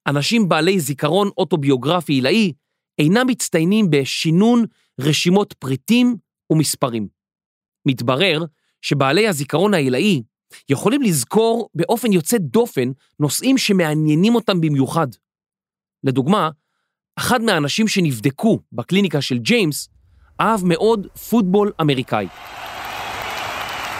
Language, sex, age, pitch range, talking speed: Hebrew, male, 30-49, 140-210 Hz, 90 wpm